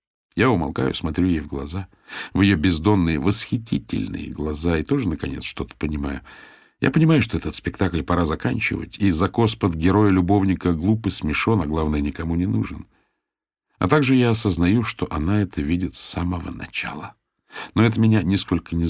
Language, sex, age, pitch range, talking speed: Russian, male, 50-69, 85-105 Hz, 160 wpm